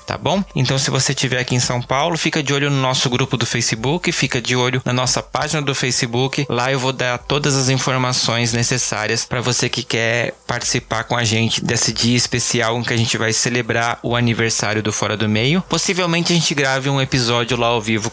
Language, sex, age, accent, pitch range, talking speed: Portuguese, male, 20-39, Brazilian, 120-140 Hz, 220 wpm